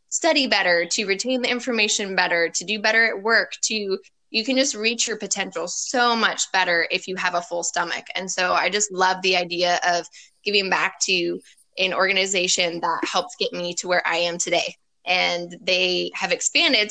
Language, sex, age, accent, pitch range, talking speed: English, female, 20-39, American, 180-220 Hz, 190 wpm